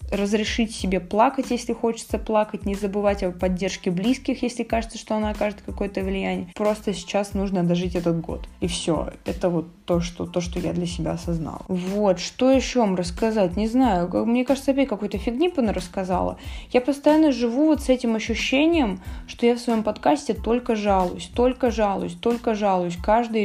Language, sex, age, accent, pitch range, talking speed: Russian, female, 20-39, native, 195-245 Hz, 175 wpm